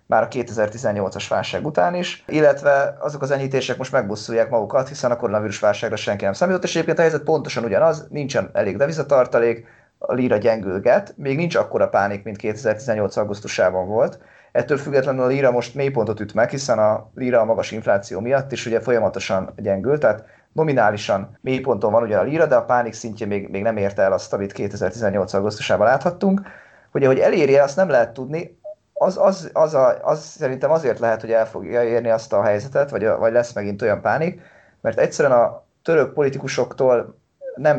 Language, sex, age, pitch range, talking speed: Hungarian, male, 30-49, 110-145 Hz, 185 wpm